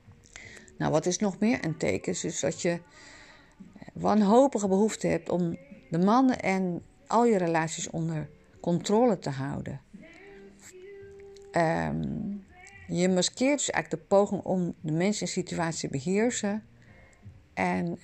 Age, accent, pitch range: 50-69, Dutch, 155-210 Hz